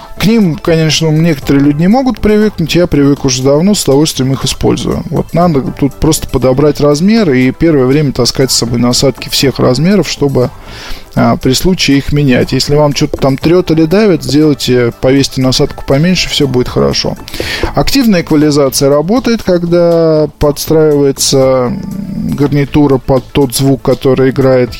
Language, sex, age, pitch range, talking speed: Russian, male, 20-39, 125-155 Hz, 150 wpm